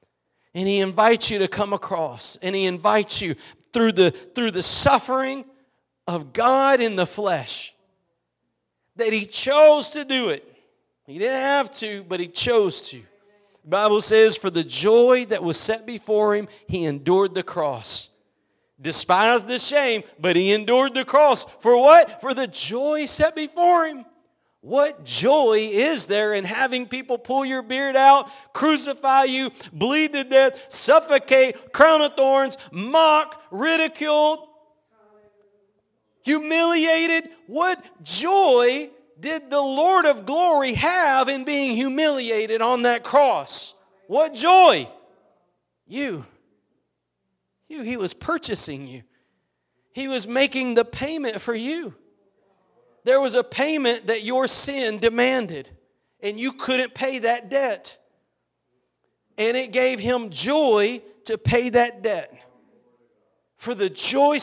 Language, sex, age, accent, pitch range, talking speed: English, male, 40-59, American, 210-280 Hz, 135 wpm